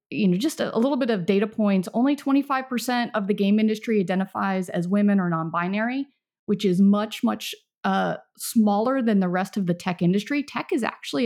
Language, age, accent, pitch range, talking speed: English, 30-49, American, 190-240 Hz, 190 wpm